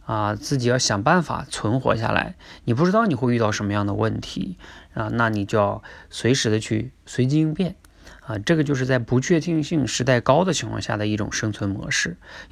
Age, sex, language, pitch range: 20-39, male, Chinese, 105-135 Hz